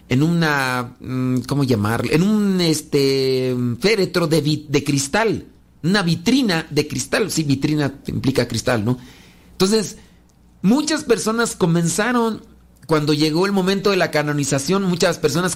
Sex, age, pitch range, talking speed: male, 40-59, 130-185 Hz, 125 wpm